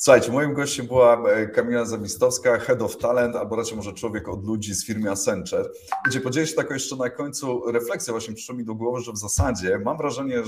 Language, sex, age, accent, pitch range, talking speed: Polish, male, 30-49, native, 105-135 Hz, 205 wpm